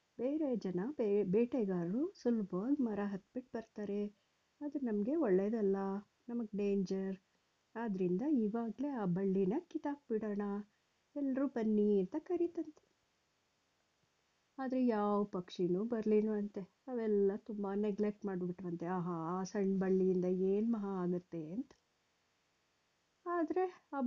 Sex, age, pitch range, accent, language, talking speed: female, 50-69, 190-255 Hz, native, Kannada, 105 wpm